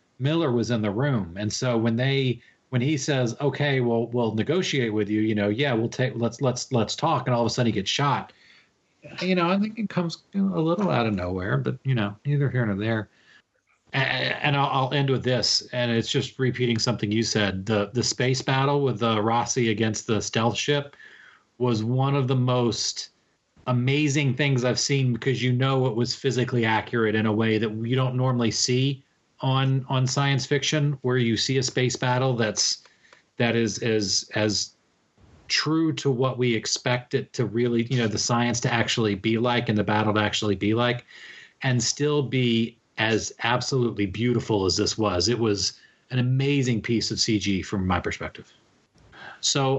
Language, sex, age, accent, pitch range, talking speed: English, male, 40-59, American, 110-135 Hz, 195 wpm